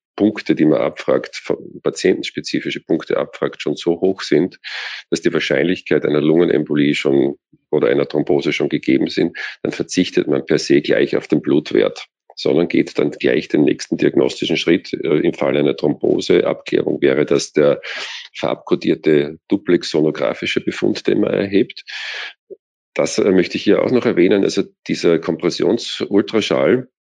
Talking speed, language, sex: 140 wpm, German, male